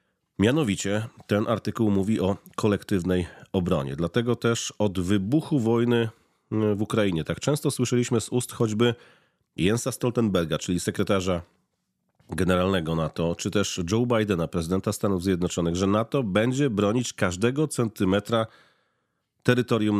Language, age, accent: Polish, 40-59, native